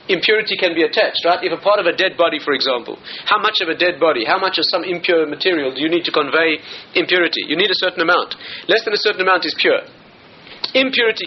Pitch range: 165-210 Hz